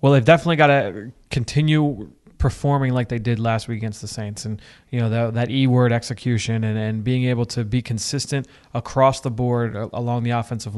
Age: 20-39